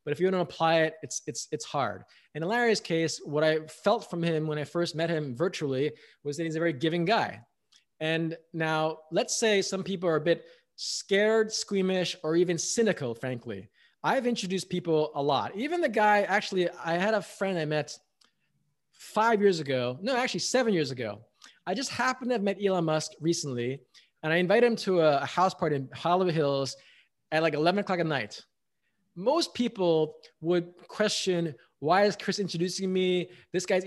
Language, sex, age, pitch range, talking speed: English, male, 20-39, 155-205 Hz, 190 wpm